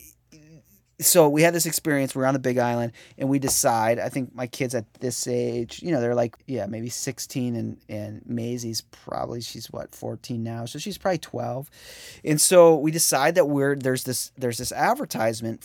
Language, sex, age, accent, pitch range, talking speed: English, male, 30-49, American, 115-130 Hz, 190 wpm